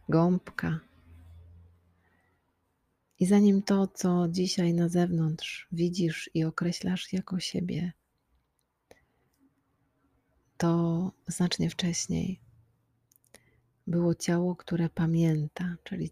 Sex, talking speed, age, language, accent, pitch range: female, 80 wpm, 40-59, Polish, native, 150-175 Hz